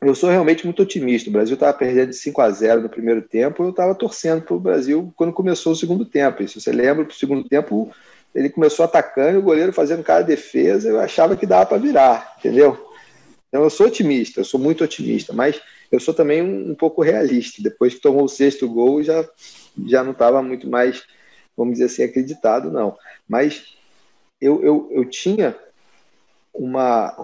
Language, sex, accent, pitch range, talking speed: Portuguese, male, Brazilian, 125-160 Hz, 195 wpm